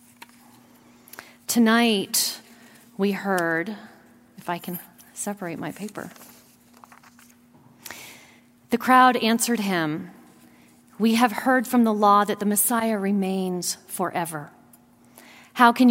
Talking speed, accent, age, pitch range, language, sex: 100 wpm, American, 40-59, 190-235 Hz, English, female